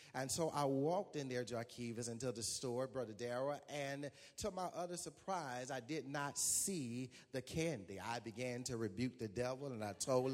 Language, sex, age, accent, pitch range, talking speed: English, male, 30-49, American, 120-150 Hz, 185 wpm